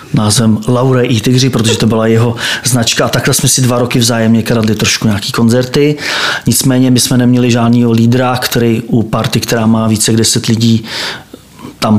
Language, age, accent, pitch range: Czech, 30-49, native, 115-135 Hz